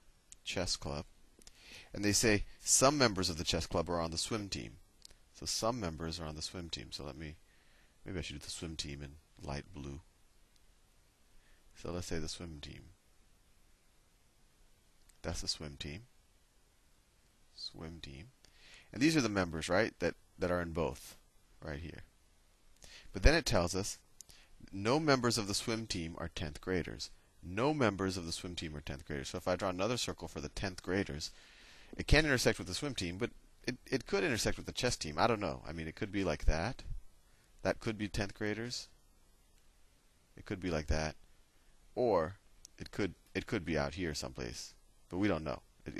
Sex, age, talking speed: male, 30-49, 190 wpm